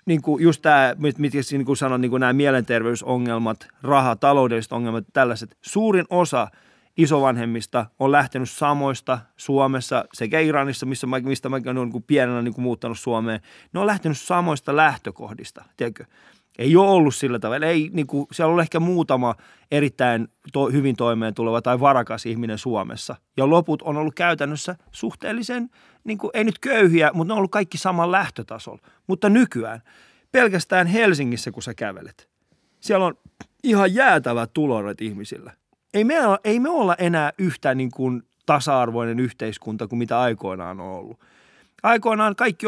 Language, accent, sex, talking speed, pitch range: Finnish, native, male, 155 wpm, 120-170 Hz